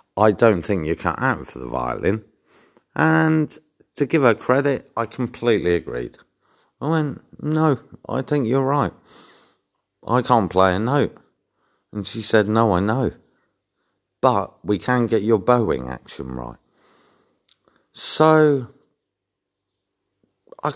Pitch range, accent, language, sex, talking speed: 85-125 Hz, British, English, male, 130 wpm